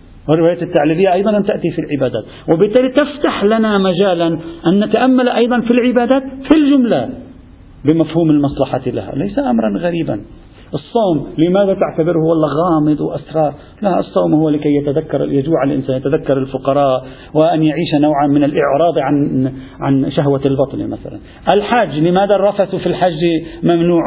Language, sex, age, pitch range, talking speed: Arabic, male, 50-69, 150-230 Hz, 135 wpm